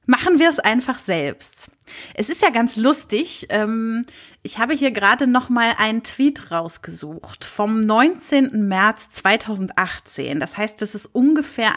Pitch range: 200-270 Hz